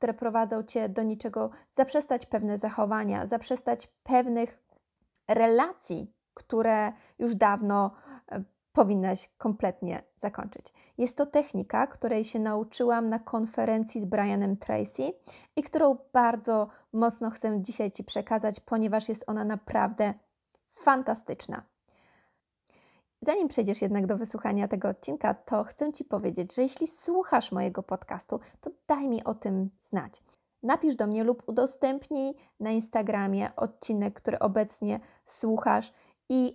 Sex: female